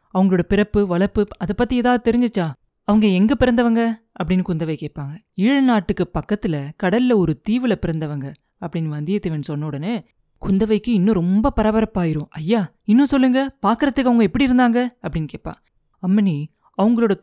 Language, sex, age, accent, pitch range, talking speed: Tamil, female, 30-49, native, 165-230 Hz, 135 wpm